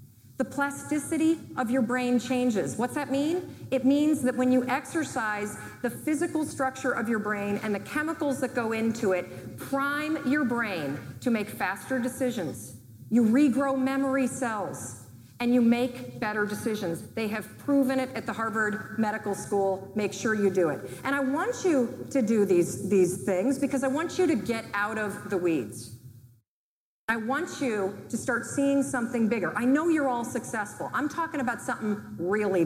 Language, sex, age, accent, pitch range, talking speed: English, female, 40-59, American, 165-255 Hz, 175 wpm